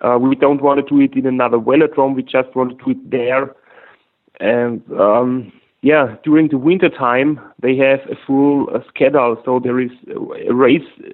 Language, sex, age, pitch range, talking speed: English, male, 30-49, 125-150 Hz, 190 wpm